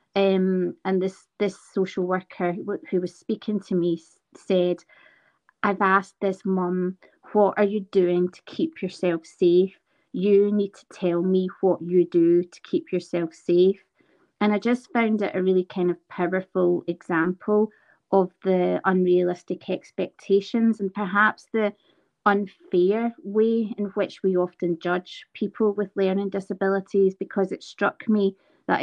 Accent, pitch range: British, 175-195 Hz